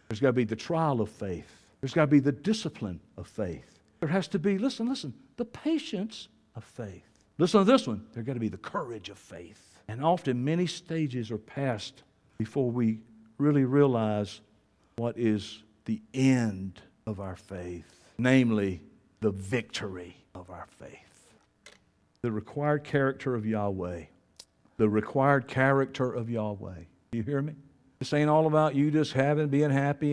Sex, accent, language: male, American, English